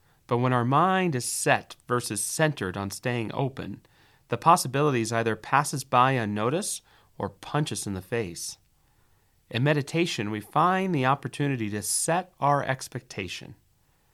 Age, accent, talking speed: 30-49, American, 140 wpm